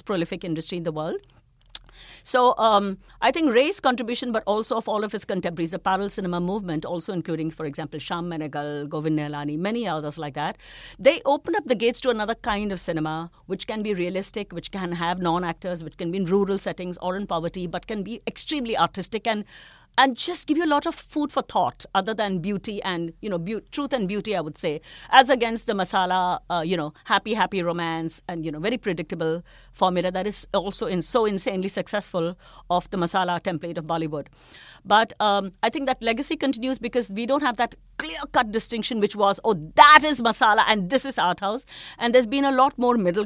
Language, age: English, 50-69